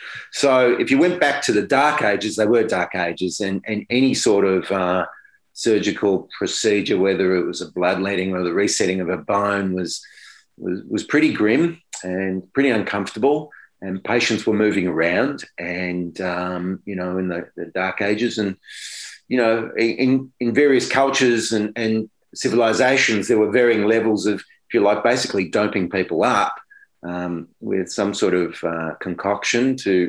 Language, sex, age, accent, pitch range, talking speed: English, male, 30-49, Australian, 90-115 Hz, 170 wpm